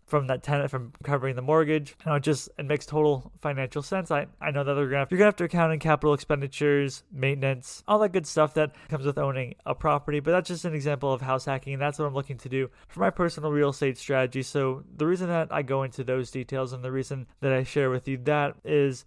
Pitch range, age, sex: 130-155 Hz, 20-39, male